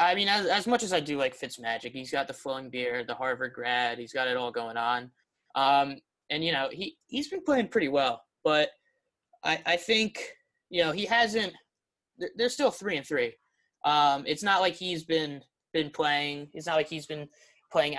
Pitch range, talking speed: 135-165 Hz, 200 wpm